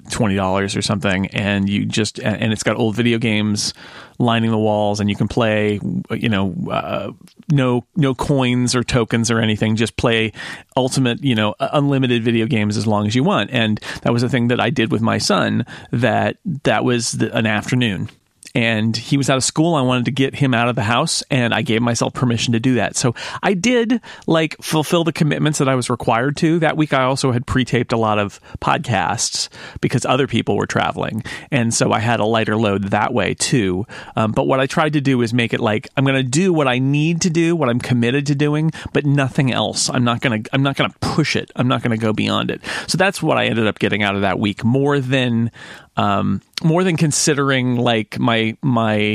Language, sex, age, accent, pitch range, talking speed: English, male, 40-59, American, 110-140 Hz, 225 wpm